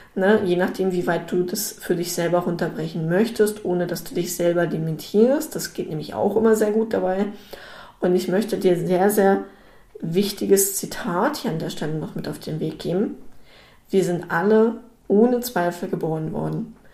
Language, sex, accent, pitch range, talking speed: German, female, German, 180-220 Hz, 180 wpm